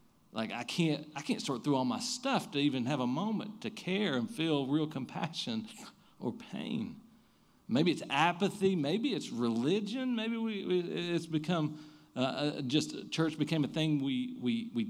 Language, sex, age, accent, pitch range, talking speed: English, male, 40-59, American, 125-205 Hz, 175 wpm